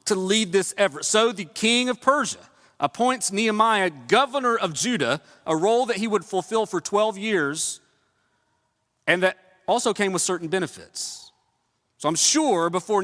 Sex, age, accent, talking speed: male, 40-59, American, 155 wpm